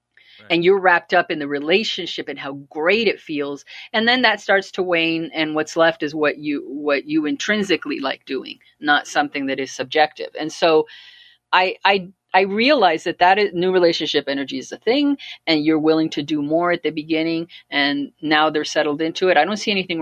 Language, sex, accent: English, female, American